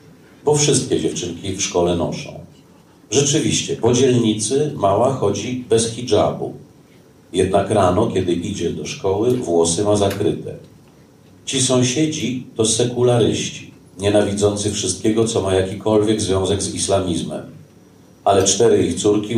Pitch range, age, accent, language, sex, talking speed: 90-115 Hz, 40-59, native, Polish, male, 120 wpm